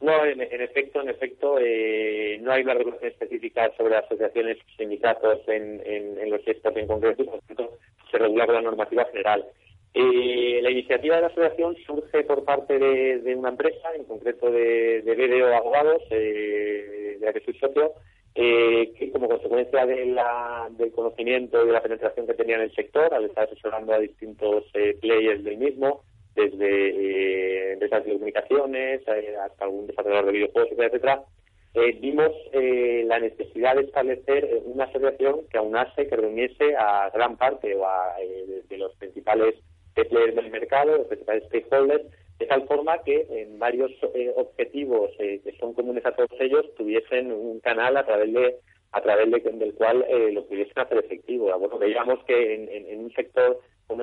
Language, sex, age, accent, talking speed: Spanish, male, 30-49, Spanish, 180 wpm